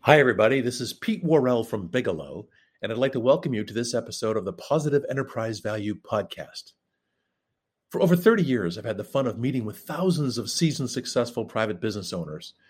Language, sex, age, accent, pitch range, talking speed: English, male, 50-69, American, 110-145 Hz, 195 wpm